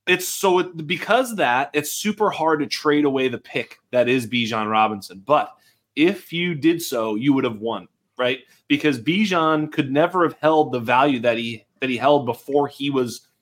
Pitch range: 120-160 Hz